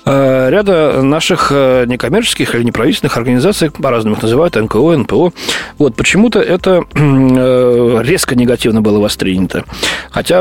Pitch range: 120-150 Hz